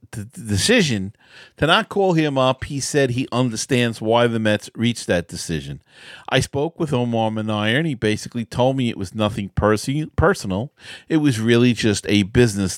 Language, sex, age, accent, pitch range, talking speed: English, male, 40-59, American, 100-135 Hz, 180 wpm